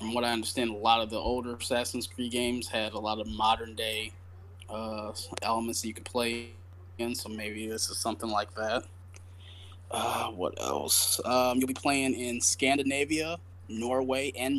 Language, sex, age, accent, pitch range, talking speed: English, male, 20-39, American, 90-120 Hz, 175 wpm